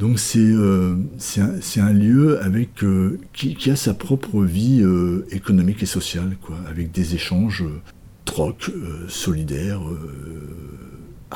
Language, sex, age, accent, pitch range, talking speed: French, male, 60-79, French, 85-110 Hz, 155 wpm